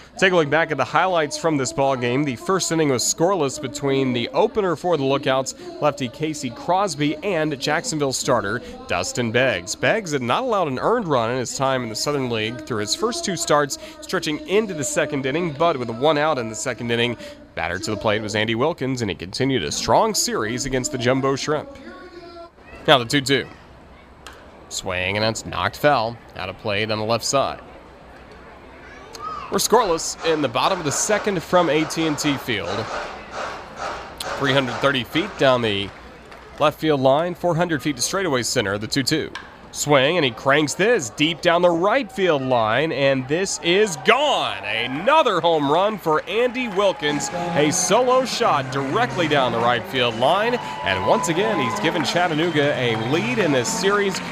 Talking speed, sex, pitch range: 175 wpm, male, 125-175 Hz